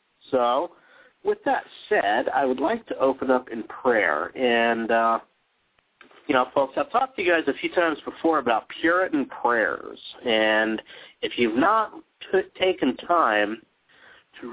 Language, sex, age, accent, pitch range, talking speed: English, male, 40-59, American, 115-175 Hz, 150 wpm